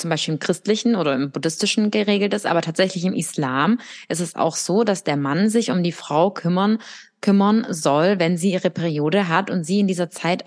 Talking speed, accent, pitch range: 210 wpm, German, 165-205 Hz